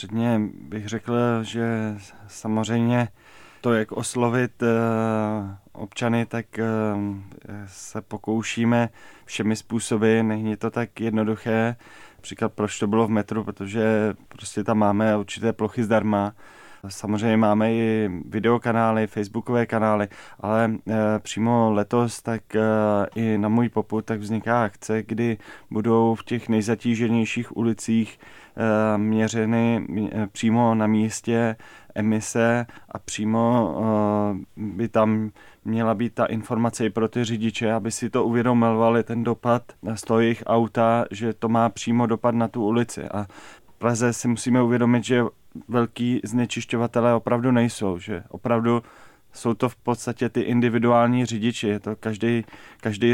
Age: 20-39